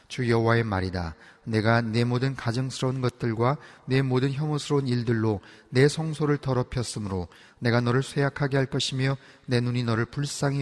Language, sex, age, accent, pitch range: Korean, male, 30-49, native, 105-130 Hz